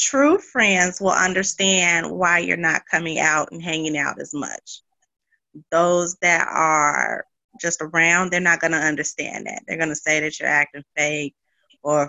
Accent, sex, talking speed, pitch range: American, female, 170 wpm, 160-195 Hz